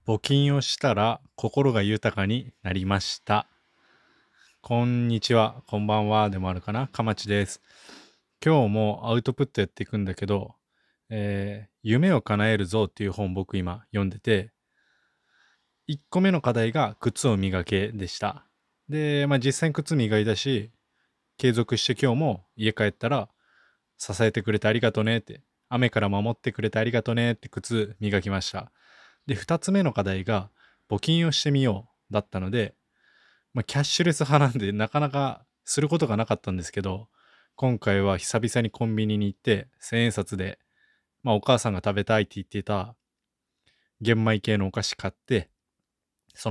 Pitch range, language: 100-125 Hz, Japanese